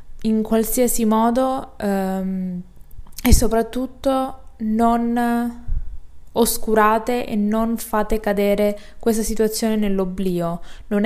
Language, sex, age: Italian, female, 20-39